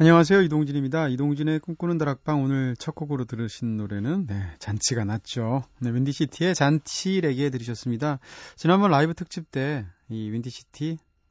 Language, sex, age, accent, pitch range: Korean, male, 30-49, native, 115-160 Hz